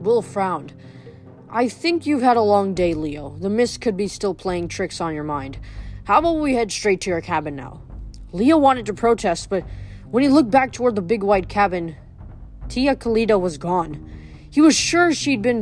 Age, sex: 20-39, female